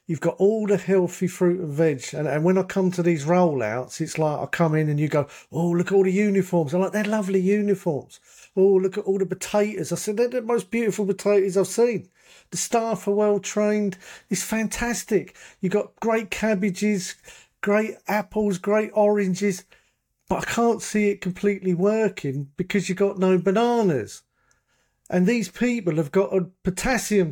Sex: male